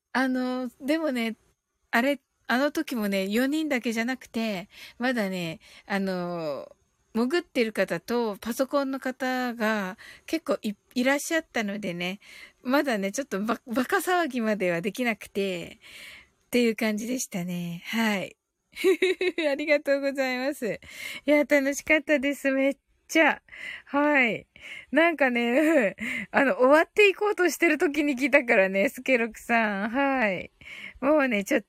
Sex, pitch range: female, 220-295 Hz